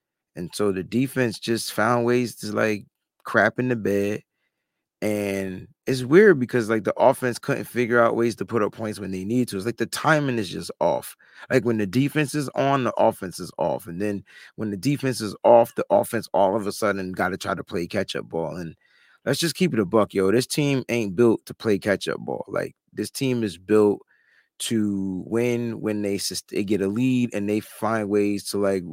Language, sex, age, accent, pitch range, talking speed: English, male, 20-39, American, 100-125 Hz, 215 wpm